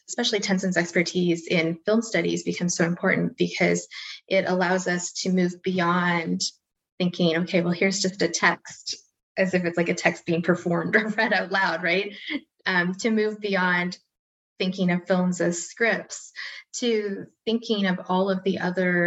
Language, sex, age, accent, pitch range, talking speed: English, female, 20-39, American, 175-200 Hz, 165 wpm